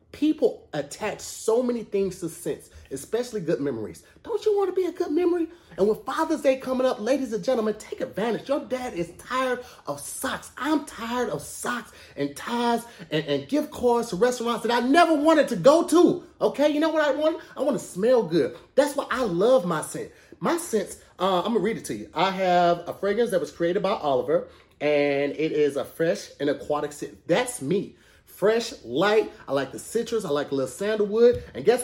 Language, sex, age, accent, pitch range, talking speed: English, male, 30-49, American, 170-270 Hz, 215 wpm